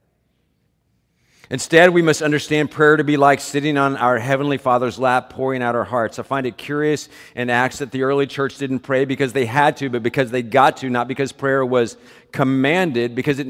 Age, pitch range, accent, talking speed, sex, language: 50-69, 95-135 Hz, American, 205 wpm, male, English